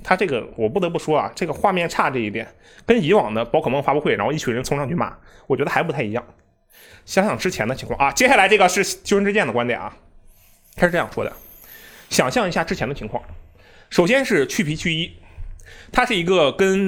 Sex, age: male, 20-39